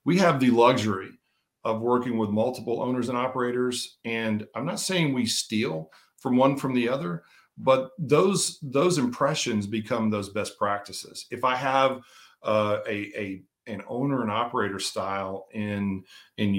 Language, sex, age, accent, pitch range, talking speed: English, male, 40-59, American, 105-140 Hz, 155 wpm